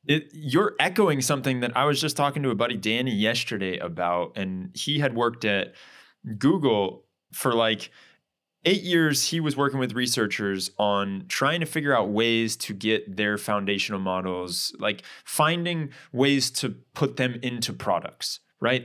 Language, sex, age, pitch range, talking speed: English, male, 20-39, 105-150 Hz, 155 wpm